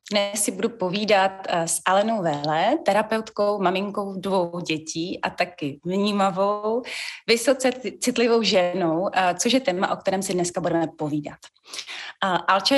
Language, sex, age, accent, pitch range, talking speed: Czech, female, 30-49, native, 175-215 Hz, 125 wpm